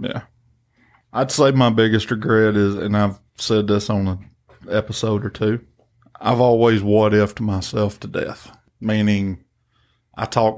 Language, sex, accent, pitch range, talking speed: English, male, American, 105-115 Hz, 145 wpm